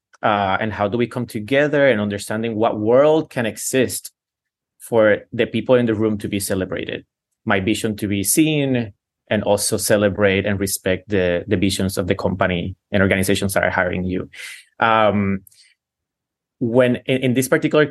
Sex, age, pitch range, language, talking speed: male, 20-39, 100-120 Hz, English, 170 wpm